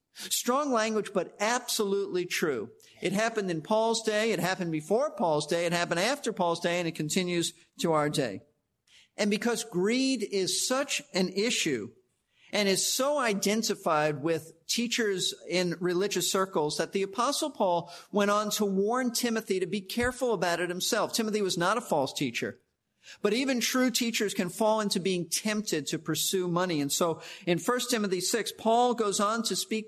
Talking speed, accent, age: 175 wpm, American, 50-69